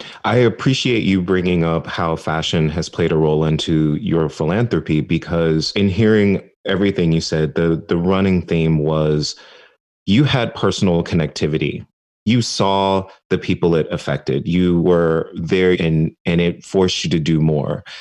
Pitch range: 80-105 Hz